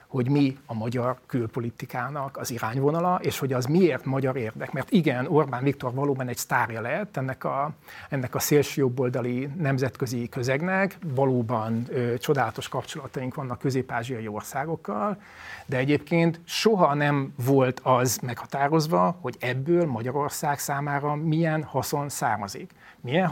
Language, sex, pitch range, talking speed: Hungarian, male, 125-160 Hz, 130 wpm